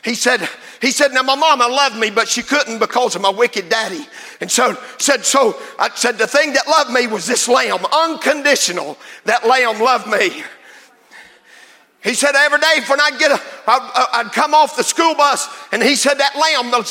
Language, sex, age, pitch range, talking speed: English, male, 50-69, 235-285 Hz, 200 wpm